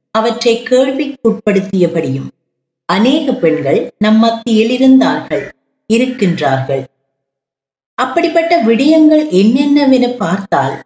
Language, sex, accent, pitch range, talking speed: Tamil, female, native, 175-265 Hz, 65 wpm